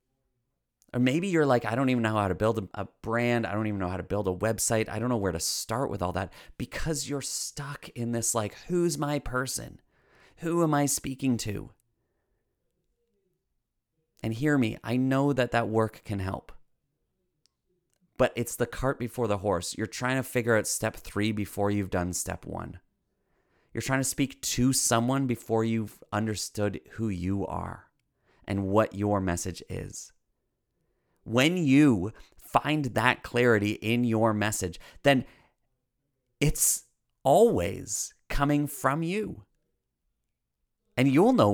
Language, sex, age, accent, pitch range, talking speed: English, male, 30-49, American, 105-135 Hz, 155 wpm